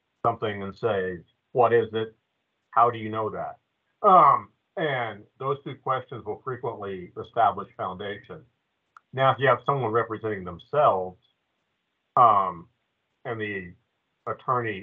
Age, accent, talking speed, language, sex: 50-69, American, 125 wpm, English, male